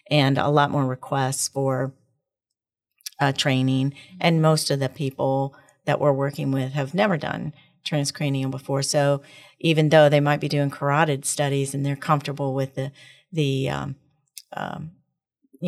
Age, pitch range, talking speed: 40-59, 135-150 Hz, 145 wpm